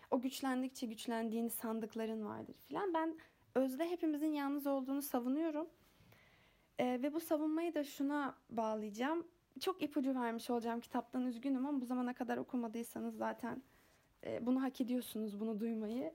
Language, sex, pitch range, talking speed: Turkish, female, 235-310 Hz, 140 wpm